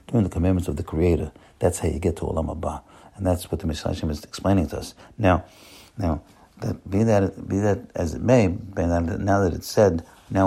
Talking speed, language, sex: 200 wpm, English, male